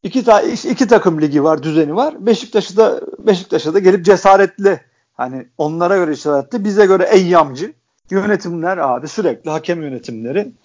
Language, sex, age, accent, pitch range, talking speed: Turkish, male, 50-69, native, 165-210 Hz, 150 wpm